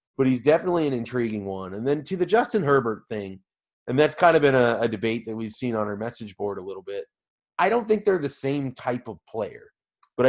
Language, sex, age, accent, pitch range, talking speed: English, male, 30-49, American, 115-140 Hz, 240 wpm